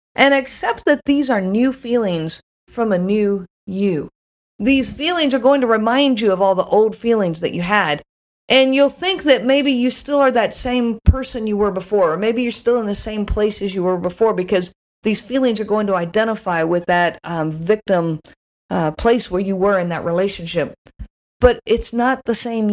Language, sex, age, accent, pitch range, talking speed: English, female, 50-69, American, 195-255 Hz, 200 wpm